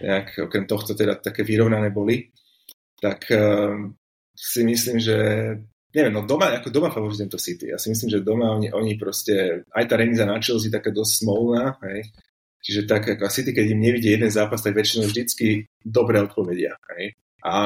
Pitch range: 100-115 Hz